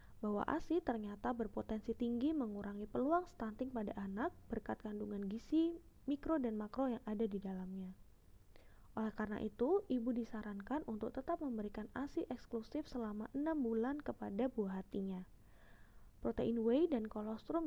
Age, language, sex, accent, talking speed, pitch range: 20-39, Indonesian, female, native, 135 wpm, 210-265 Hz